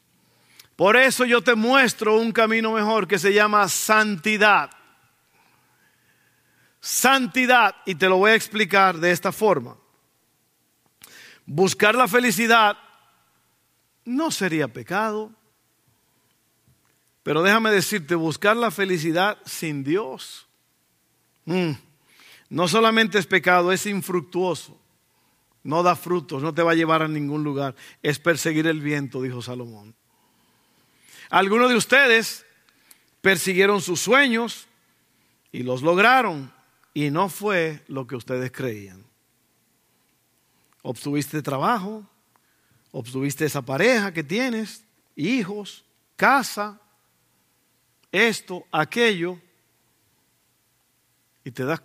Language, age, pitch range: Spanish, 50-69, 135-210 Hz